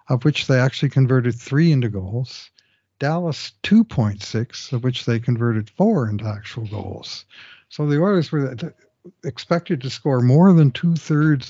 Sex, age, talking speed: male, 60-79, 145 wpm